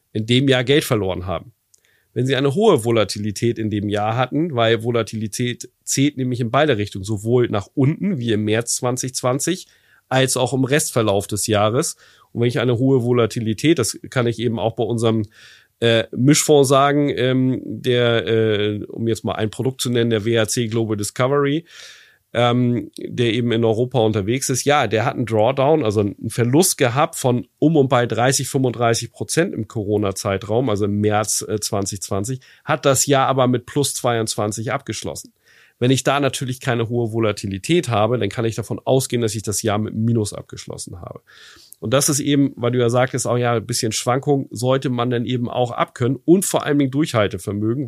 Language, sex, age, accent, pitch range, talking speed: German, male, 40-59, German, 110-135 Hz, 185 wpm